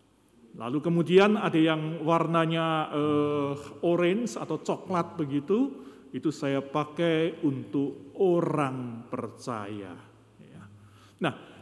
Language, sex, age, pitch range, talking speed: Indonesian, male, 50-69, 150-210 Hz, 85 wpm